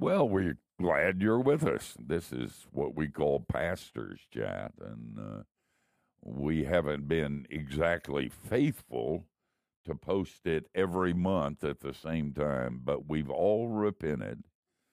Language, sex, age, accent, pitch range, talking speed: English, male, 60-79, American, 70-85 Hz, 135 wpm